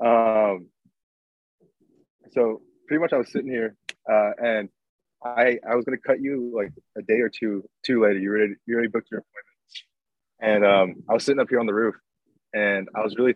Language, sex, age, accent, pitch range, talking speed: English, male, 20-39, American, 100-115 Hz, 200 wpm